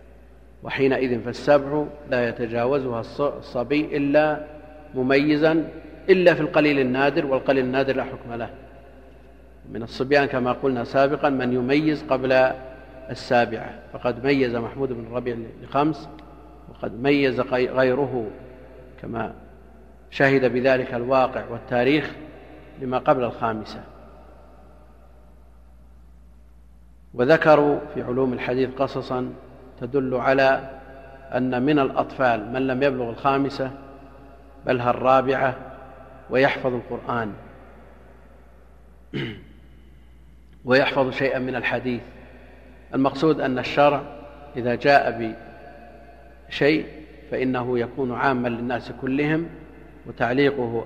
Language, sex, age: Arabic, male, 50-69